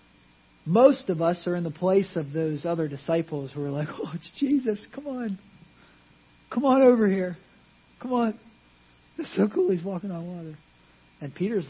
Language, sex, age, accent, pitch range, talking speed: English, male, 40-59, American, 130-185 Hz, 175 wpm